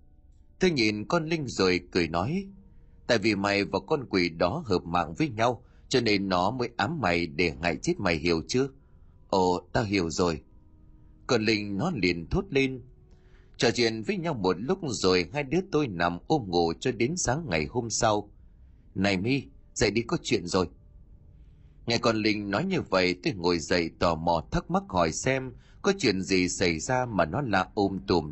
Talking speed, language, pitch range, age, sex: 195 wpm, Vietnamese, 85-125 Hz, 30-49, male